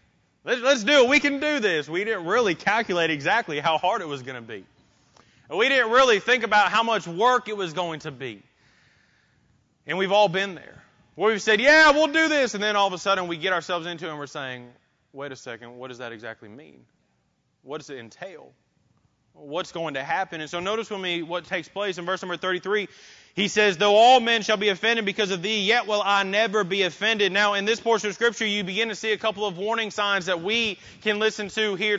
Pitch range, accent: 190-230 Hz, American